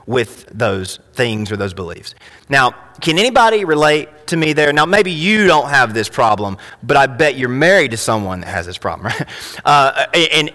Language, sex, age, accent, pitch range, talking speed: English, male, 30-49, American, 140-180 Hz, 190 wpm